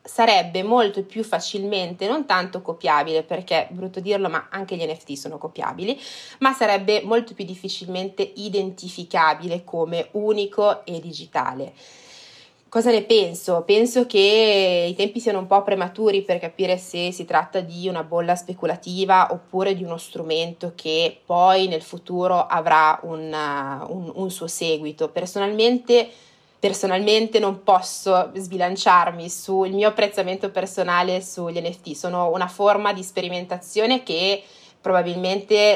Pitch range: 175-200 Hz